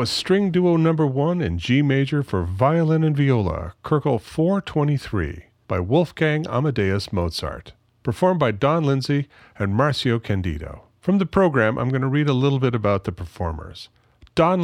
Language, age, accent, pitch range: English, 40-59, American, 105-150 Hz